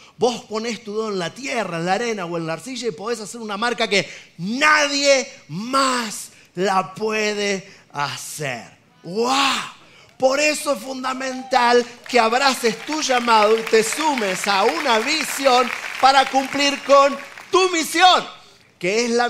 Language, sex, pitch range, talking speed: Spanish, male, 210-265 Hz, 150 wpm